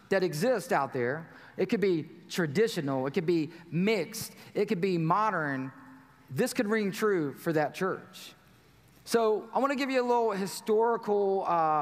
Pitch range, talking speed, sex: 165-220 Hz, 160 wpm, male